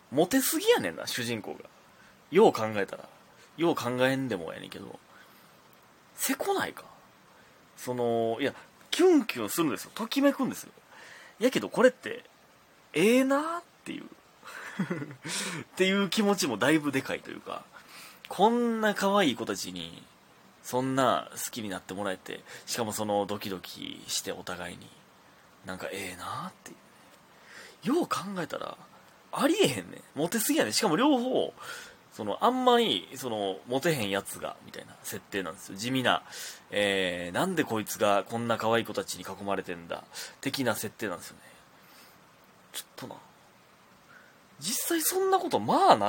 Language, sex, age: Japanese, male, 20-39